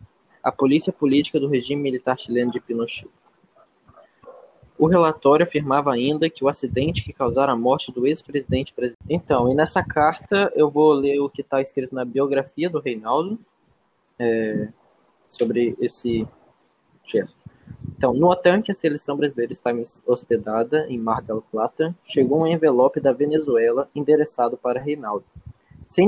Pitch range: 120-150 Hz